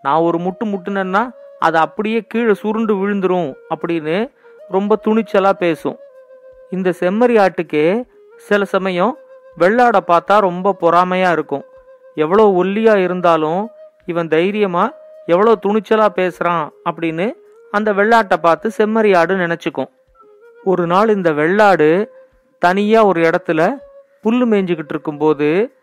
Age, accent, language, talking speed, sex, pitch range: 40-59, native, Tamil, 105 wpm, male, 175-230 Hz